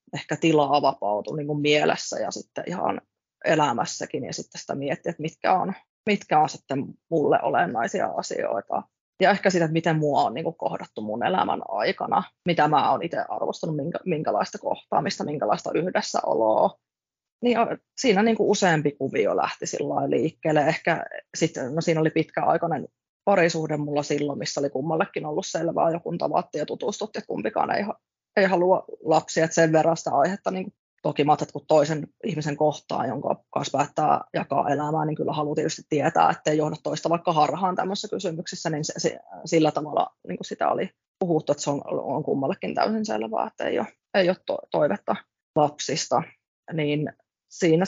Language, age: Finnish, 20-39